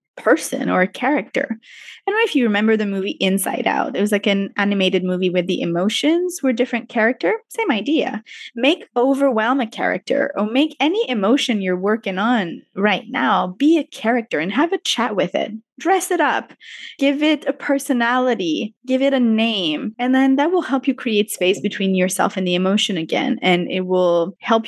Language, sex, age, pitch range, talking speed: English, female, 20-39, 190-265 Hz, 190 wpm